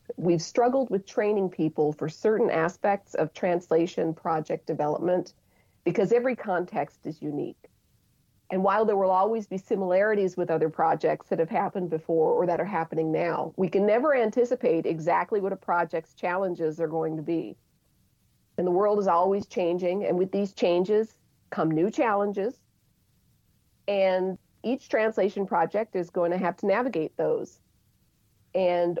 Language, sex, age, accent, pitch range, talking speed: English, female, 40-59, American, 160-200 Hz, 155 wpm